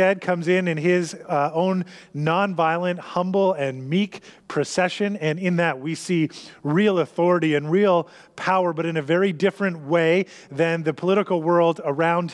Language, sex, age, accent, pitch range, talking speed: English, male, 30-49, American, 160-190 Hz, 155 wpm